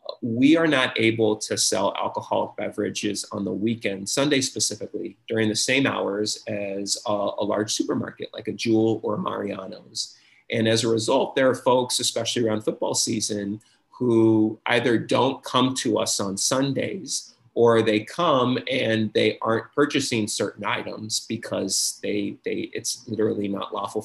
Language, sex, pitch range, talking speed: English, male, 105-115 Hz, 155 wpm